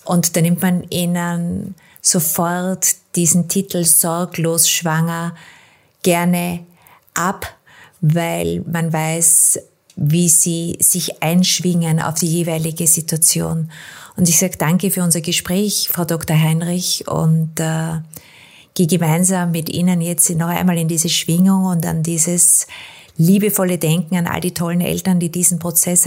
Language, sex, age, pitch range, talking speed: German, female, 30-49, 165-180 Hz, 130 wpm